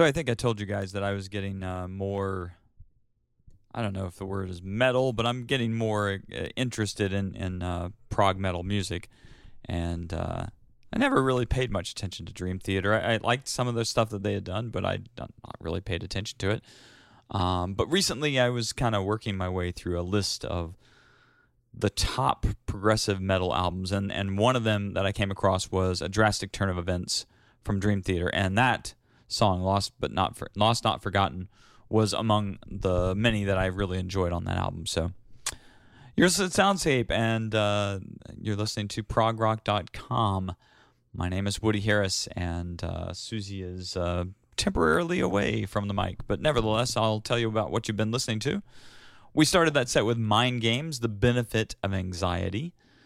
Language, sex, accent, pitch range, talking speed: English, male, American, 95-115 Hz, 190 wpm